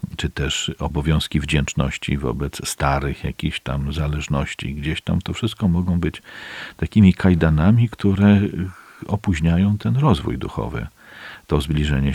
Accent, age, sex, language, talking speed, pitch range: native, 50-69, male, Polish, 120 wpm, 75-110 Hz